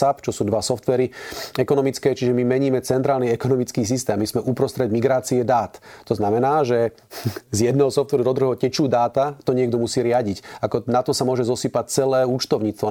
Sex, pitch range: male, 115-135 Hz